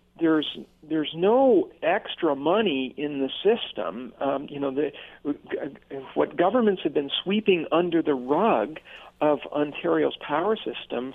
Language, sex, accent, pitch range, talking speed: English, male, American, 135-175 Hz, 130 wpm